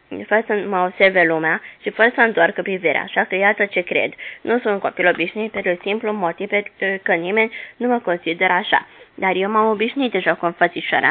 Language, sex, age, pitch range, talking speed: Romanian, female, 20-39, 175-205 Hz, 190 wpm